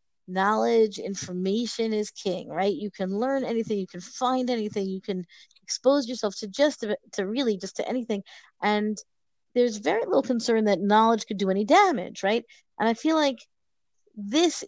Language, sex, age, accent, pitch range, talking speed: English, female, 40-59, American, 190-240 Hz, 170 wpm